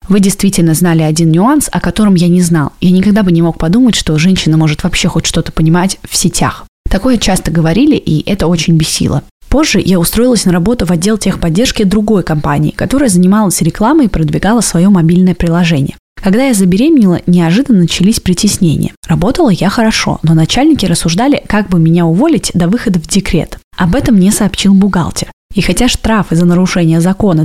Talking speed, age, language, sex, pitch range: 175 wpm, 20-39, Russian, female, 170-205 Hz